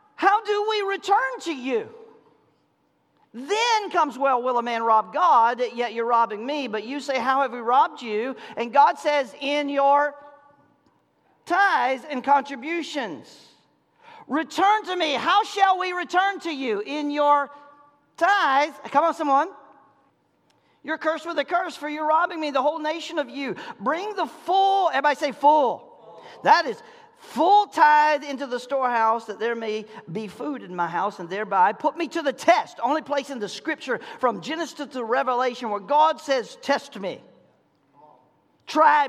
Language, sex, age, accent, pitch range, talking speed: English, male, 40-59, American, 265-355 Hz, 165 wpm